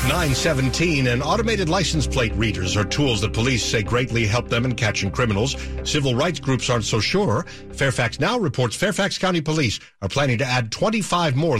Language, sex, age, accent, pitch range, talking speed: English, male, 50-69, American, 105-140 Hz, 180 wpm